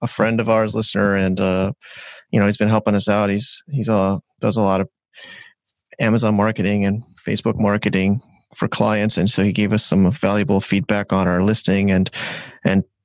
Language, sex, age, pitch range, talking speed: English, male, 30-49, 100-115 Hz, 195 wpm